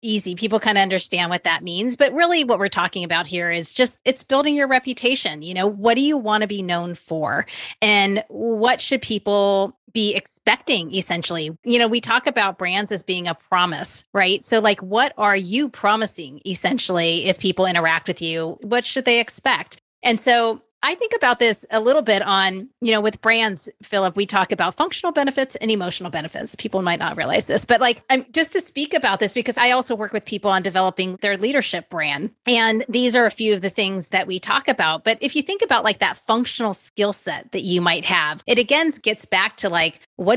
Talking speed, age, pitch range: 215 wpm, 30-49, 190-240 Hz